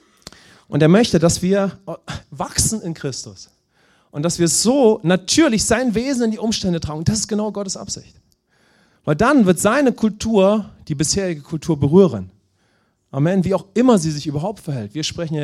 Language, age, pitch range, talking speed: English, 40-59, 145-205 Hz, 170 wpm